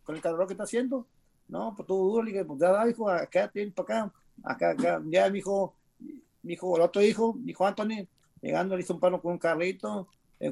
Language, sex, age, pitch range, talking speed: Spanish, male, 50-69, 170-205 Hz, 205 wpm